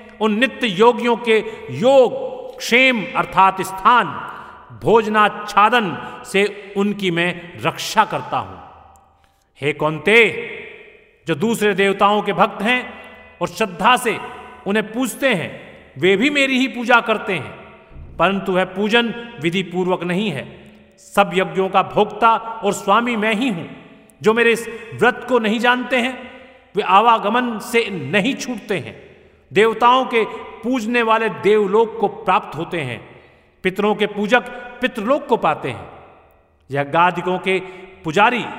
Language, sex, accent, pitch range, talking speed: Hindi, male, native, 175-230 Hz, 135 wpm